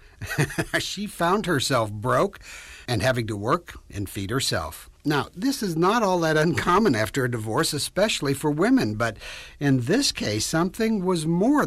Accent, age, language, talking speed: American, 60-79, English, 160 wpm